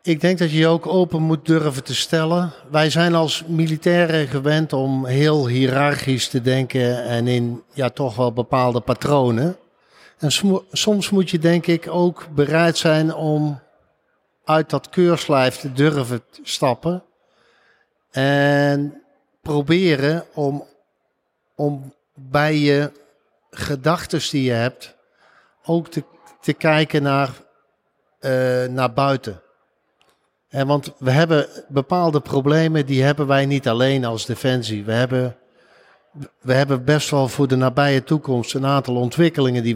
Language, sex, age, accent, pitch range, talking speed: Dutch, male, 50-69, Dutch, 130-155 Hz, 135 wpm